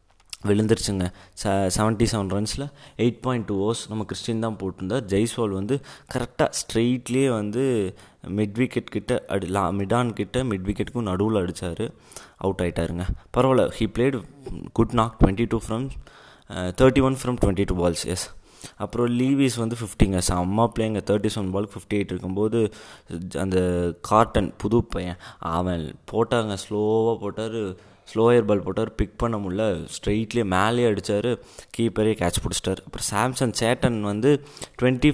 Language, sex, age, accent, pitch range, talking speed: Tamil, male, 20-39, native, 95-120 Hz, 140 wpm